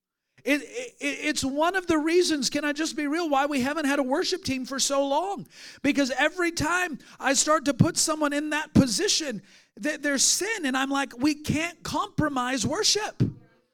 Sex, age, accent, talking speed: male, 40-59, American, 175 wpm